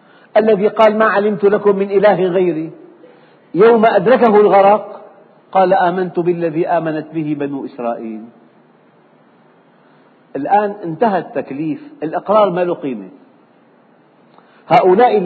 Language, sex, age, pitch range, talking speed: Arabic, male, 50-69, 165-215 Hz, 100 wpm